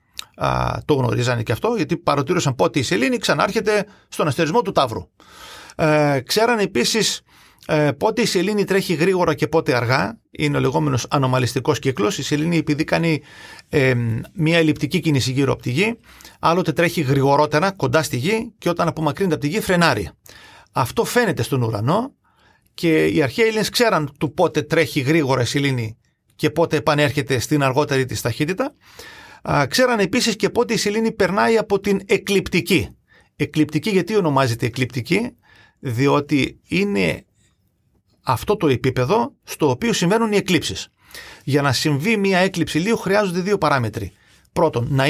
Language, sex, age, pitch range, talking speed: Greek, male, 40-59, 135-195 Hz, 145 wpm